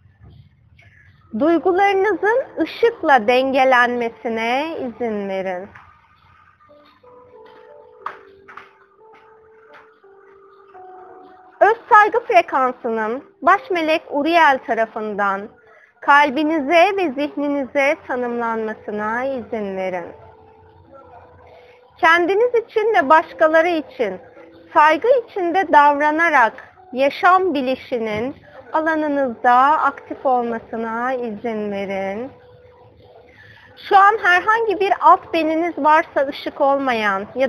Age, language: 30-49, Turkish